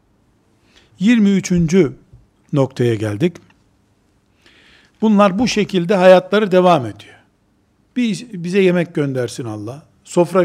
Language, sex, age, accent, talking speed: Turkish, male, 60-79, native, 85 wpm